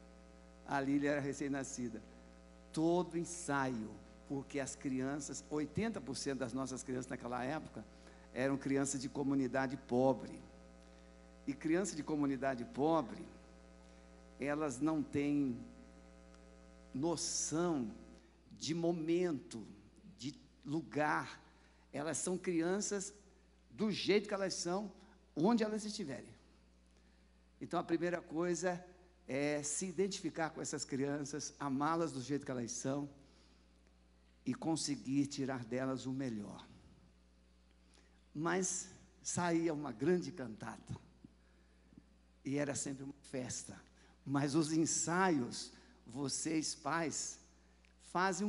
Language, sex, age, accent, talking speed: Portuguese, male, 60-79, Brazilian, 105 wpm